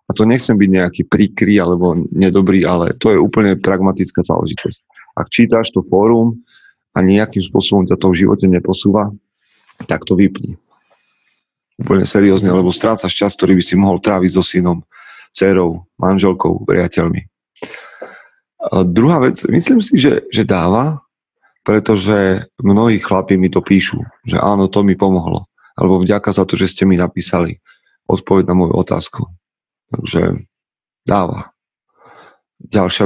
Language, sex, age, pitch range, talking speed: Slovak, male, 30-49, 90-105 Hz, 140 wpm